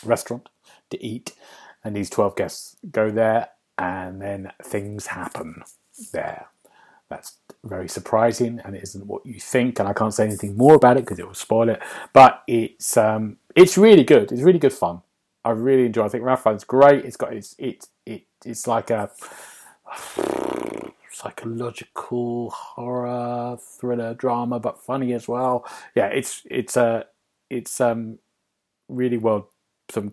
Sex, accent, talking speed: male, British, 160 wpm